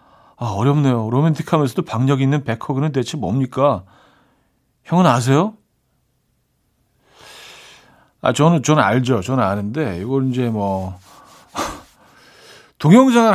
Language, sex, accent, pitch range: Korean, male, native, 120-170 Hz